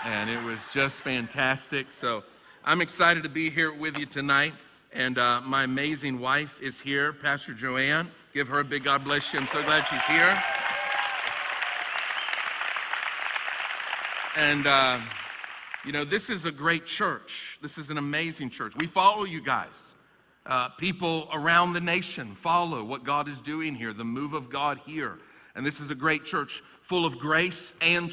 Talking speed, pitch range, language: 170 wpm, 135-170 Hz, English